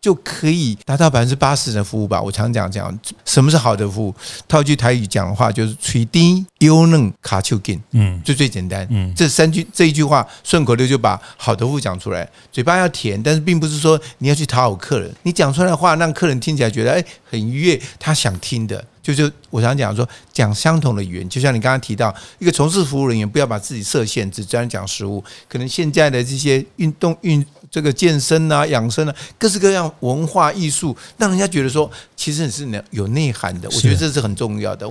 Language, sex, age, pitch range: Chinese, male, 50-69, 110-160 Hz